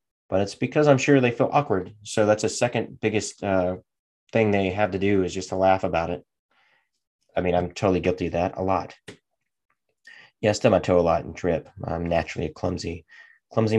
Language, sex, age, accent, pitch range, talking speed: English, male, 30-49, American, 90-110 Hz, 215 wpm